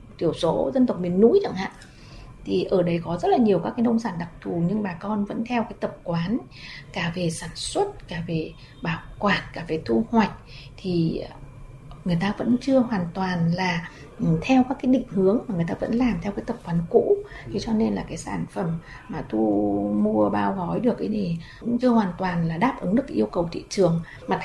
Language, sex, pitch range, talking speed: Vietnamese, female, 170-245 Hz, 225 wpm